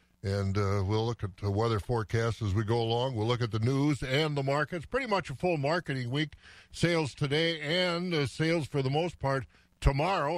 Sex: male